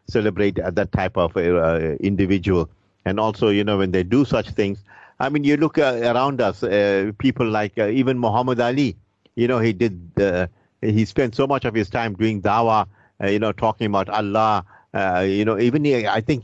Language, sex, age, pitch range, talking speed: English, male, 50-69, 95-115 Hz, 205 wpm